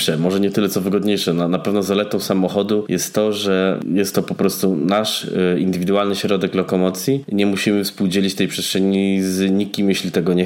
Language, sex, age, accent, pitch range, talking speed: Polish, male, 20-39, native, 95-110 Hz, 180 wpm